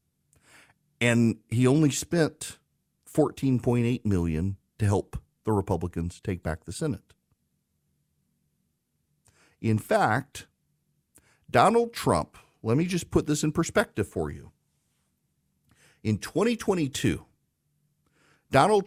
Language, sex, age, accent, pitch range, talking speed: English, male, 50-69, American, 105-140 Hz, 95 wpm